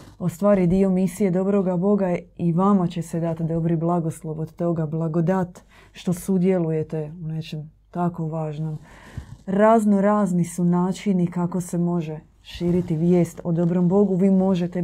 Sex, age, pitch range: female, 20-39, 165-190 Hz